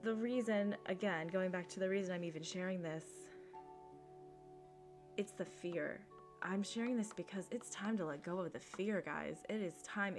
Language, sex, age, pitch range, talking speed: English, female, 20-39, 165-205 Hz, 185 wpm